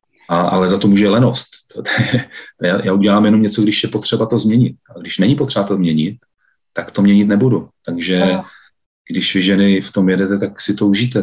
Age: 40-59